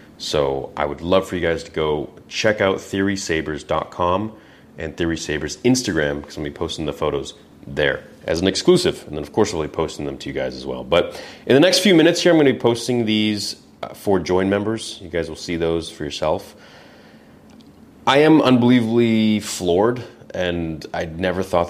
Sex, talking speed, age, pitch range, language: male, 200 wpm, 30-49, 75-110 Hz, English